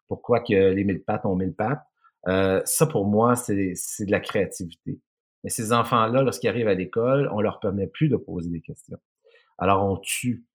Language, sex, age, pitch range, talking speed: French, male, 50-69, 95-135 Hz, 200 wpm